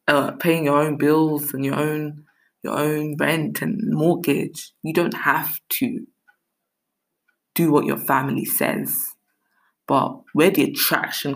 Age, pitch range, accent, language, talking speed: 20-39, 135-155 Hz, British, English, 135 wpm